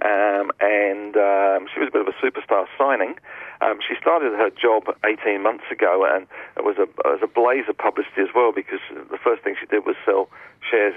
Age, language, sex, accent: 40-59, English, male, British